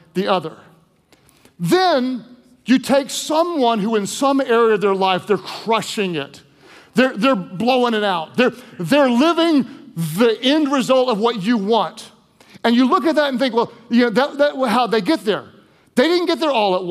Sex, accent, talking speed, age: male, American, 190 wpm, 40-59